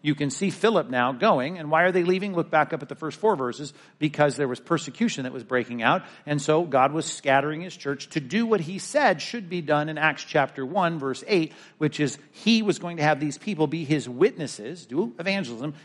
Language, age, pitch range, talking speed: English, 50-69, 140-175 Hz, 235 wpm